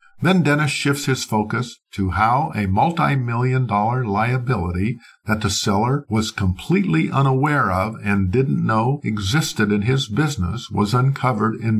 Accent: American